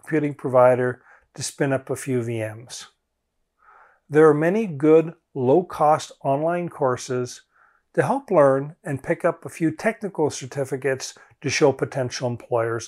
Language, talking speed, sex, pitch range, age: English, 130 wpm, male, 135-180 Hz, 50-69